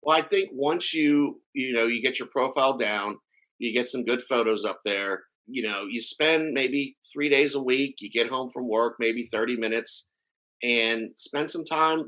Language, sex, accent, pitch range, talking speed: English, male, American, 120-205 Hz, 200 wpm